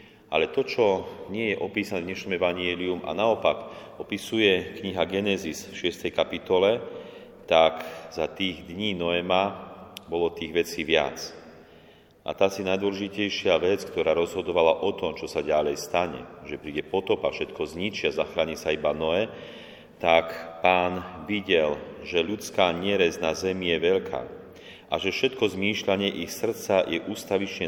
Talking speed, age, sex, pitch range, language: 145 wpm, 40-59, male, 80-100 Hz, Slovak